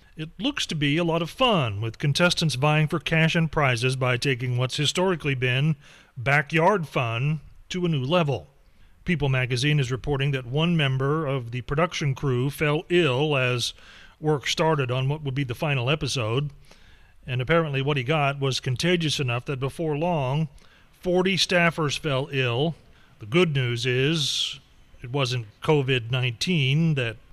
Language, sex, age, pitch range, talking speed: English, male, 40-59, 130-170 Hz, 160 wpm